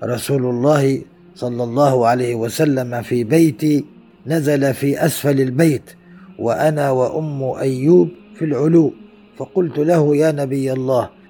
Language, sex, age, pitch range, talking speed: Arabic, male, 50-69, 135-175 Hz, 115 wpm